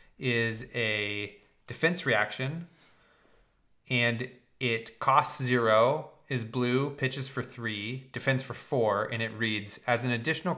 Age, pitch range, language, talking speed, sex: 30-49, 115-135 Hz, English, 125 wpm, male